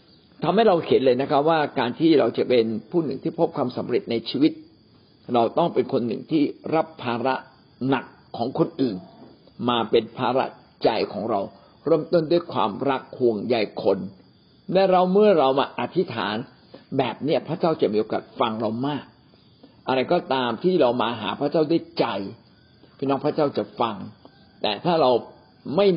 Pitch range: 125-175 Hz